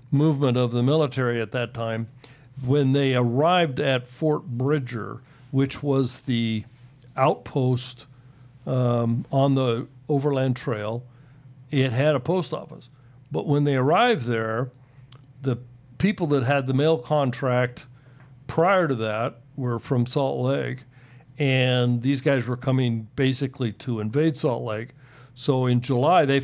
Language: English